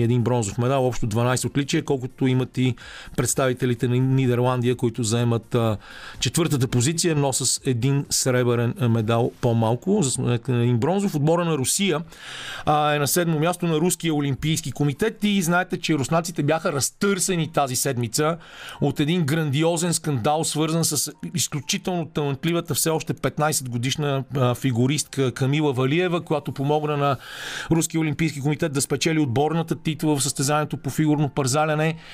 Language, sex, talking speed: Bulgarian, male, 140 wpm